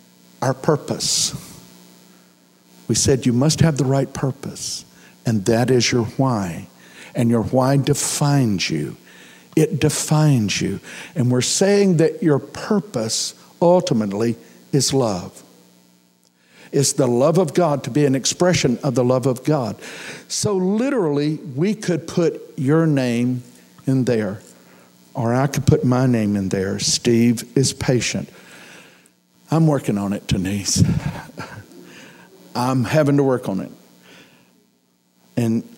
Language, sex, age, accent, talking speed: English, male, 60-79, American, 130 wpm